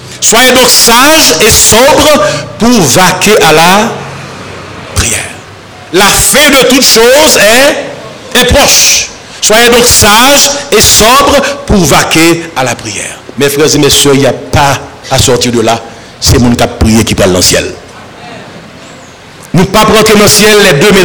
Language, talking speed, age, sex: French, 175 wpm, 60-79, male